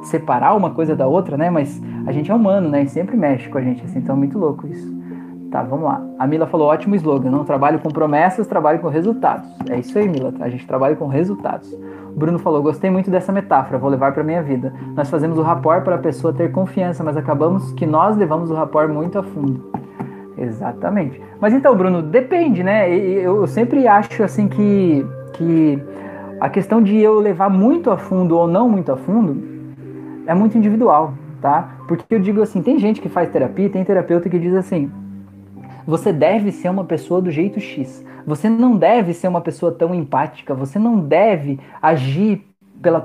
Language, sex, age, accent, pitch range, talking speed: Portuguese, male, 20-39, Brazilian, 150-210 Hz, 200 wpm